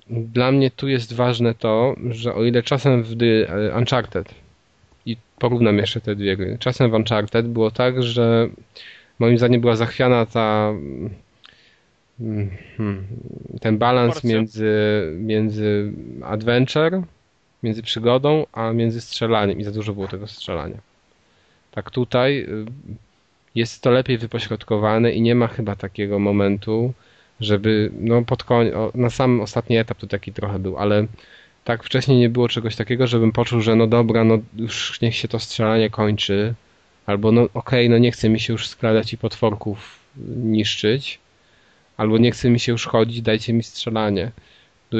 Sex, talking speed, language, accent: male, 150 wpm, Polish, native